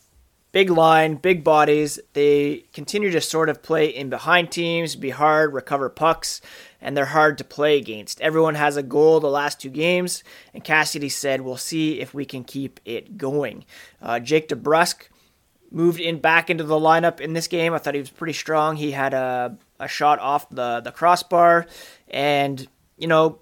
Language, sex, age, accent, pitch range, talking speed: English, male, 20-39, American, 140-165 Hz, 185 wpm